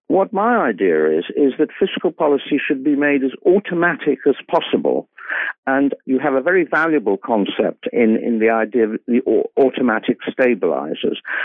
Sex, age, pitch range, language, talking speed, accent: male, 60-79, 105-140 Hz, English, 155 wpm, British